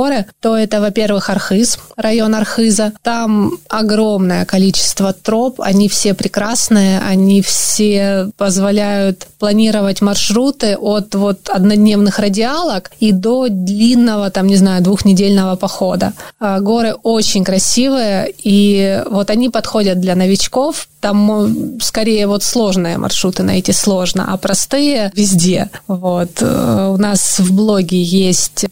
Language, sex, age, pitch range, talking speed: Russian, female, 20-39, 195-225 Hz, 120 wpm